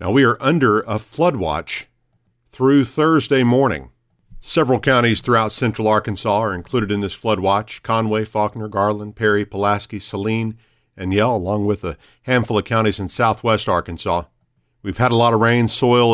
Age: 50-69